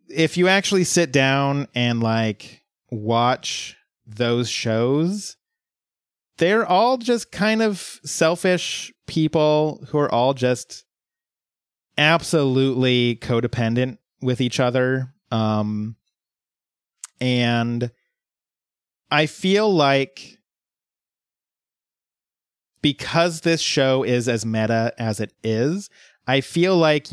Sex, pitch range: male, 120-165 Hz